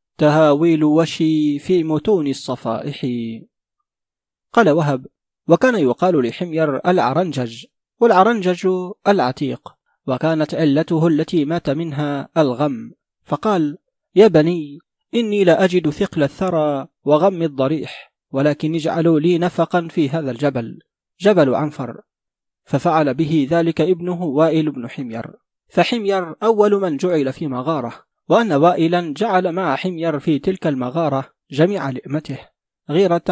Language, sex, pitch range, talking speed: Arabic, male, 145-175 Hz, 110 wpm